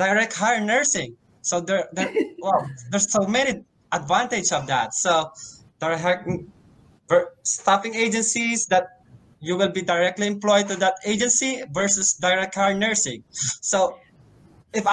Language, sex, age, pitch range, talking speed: English, male, 20-39, 170-215 Hz, 135 wpm